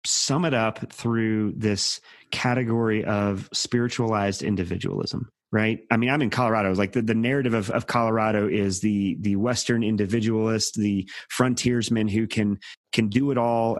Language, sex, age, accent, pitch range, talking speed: English, male, 30-49, American, 110-135 Hz, 150 wpm